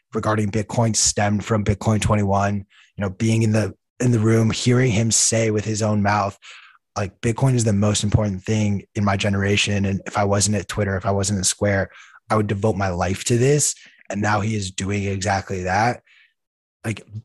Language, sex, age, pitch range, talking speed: English, male, 20-39, 100-115 Hz, 200 wpm